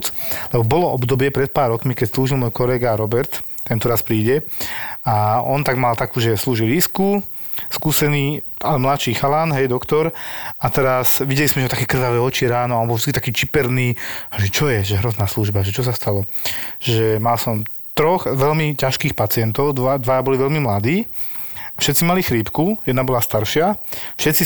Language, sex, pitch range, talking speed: Slovak, male, 120-140 Hz, 175 wpm